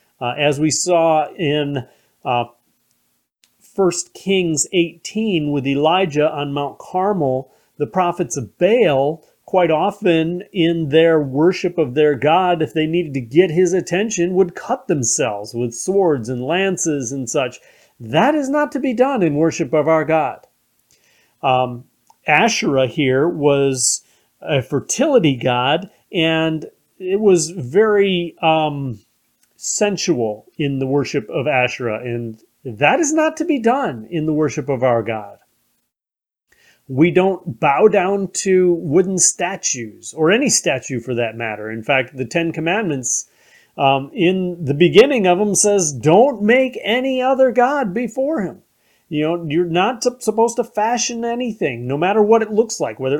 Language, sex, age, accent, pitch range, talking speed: English, male, 40-59, American, 140-200 Hz, 150 wpm